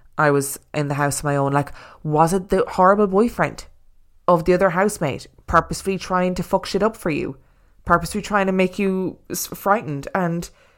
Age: 20-39